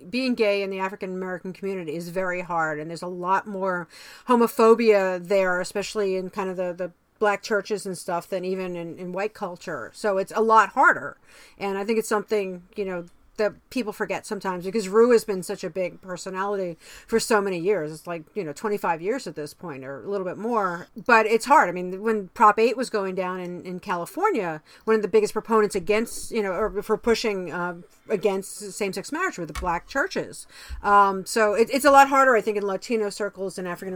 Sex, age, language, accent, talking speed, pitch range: female, 50-69, English, American, 220 wpm, 185-220 Hz